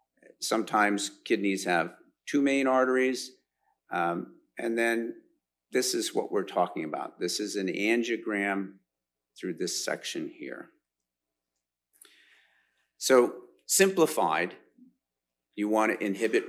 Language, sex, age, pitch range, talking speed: English, male, 50-69, 100-145 Hz, 105 wpm